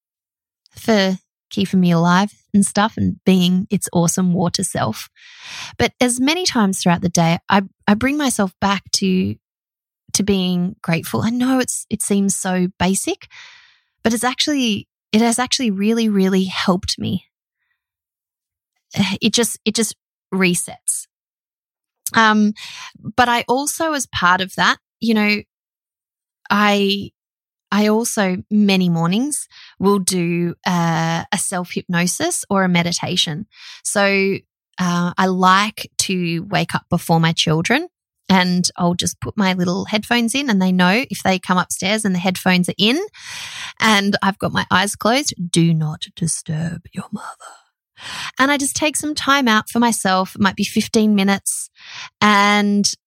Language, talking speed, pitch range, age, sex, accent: English, 145 wpm, 180-230 Hz, 20-39, female, Australian